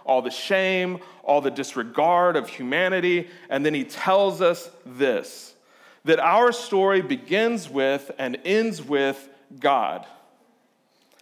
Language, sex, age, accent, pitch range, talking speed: English, male, 40-59, American, 155-200 Hz, 130 wpm